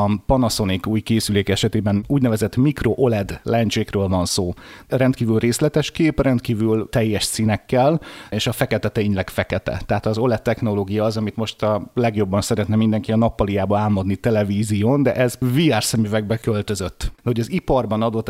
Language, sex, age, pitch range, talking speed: Hungarian, male, 30-49, 105-125 Hz, 150 wpm